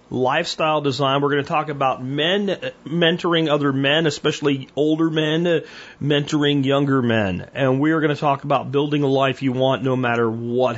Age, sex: 40-59, male